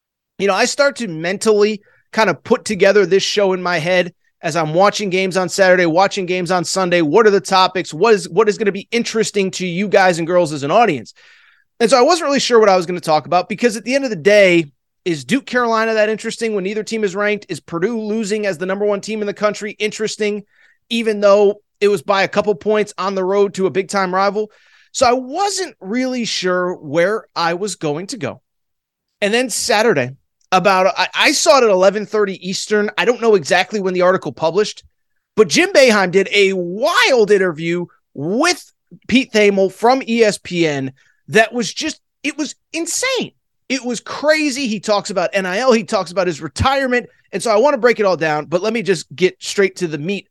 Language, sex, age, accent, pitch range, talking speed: English, male, 30-49, American, 175-220 Hz, 215 wpm